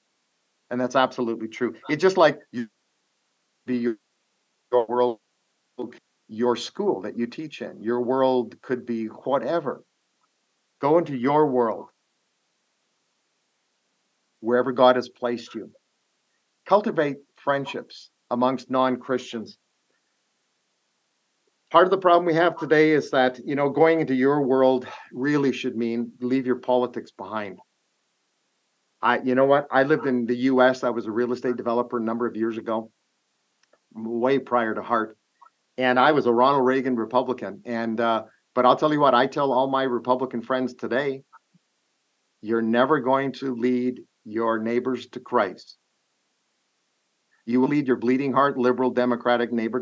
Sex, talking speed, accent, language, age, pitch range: male, 145 wpm, American, English, 50-69, 120-135 Hz